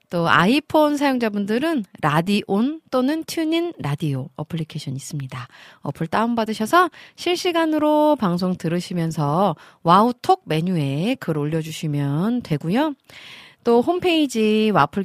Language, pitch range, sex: Korean, 155-255 Hz, female